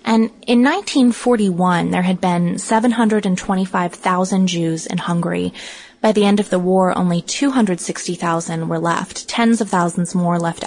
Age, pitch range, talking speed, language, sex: 20-39, 170-210 Hz, 140 wpm, English, female